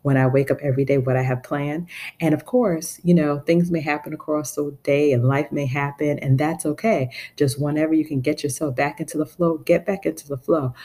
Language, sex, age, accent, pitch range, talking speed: English, female, 40-59, American, 130-155 Hz, 240 wpm